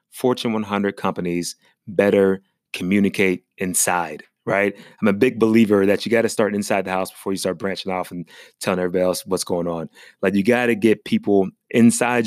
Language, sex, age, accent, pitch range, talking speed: English, male, 30-49, American, 95-115 Hz, 185 wpm